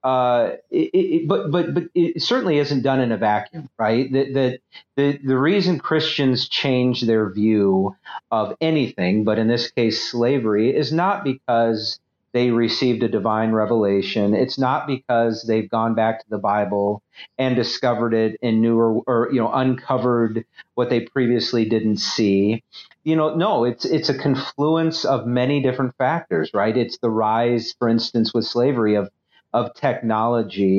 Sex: male